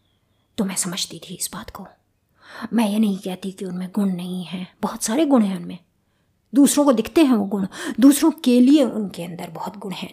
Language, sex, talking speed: Hindi, female, 205 wpm